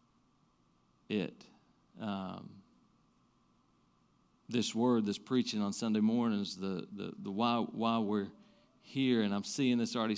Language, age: English, 40-59